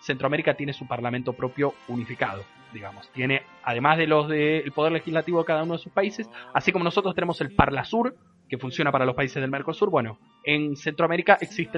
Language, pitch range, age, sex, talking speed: Spanish, 130-170 Hz, 20-39, male, 195 wpm